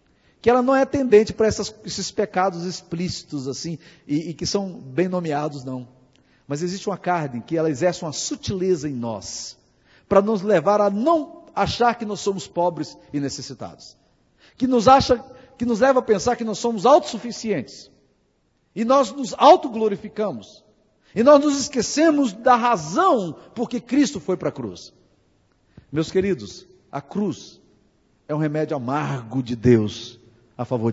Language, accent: Portuguese, Brazilian